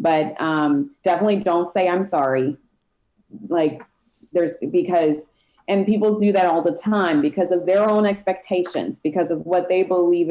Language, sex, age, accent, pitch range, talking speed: English, female, 30-49, American, 155-190 Hz, 155 wpm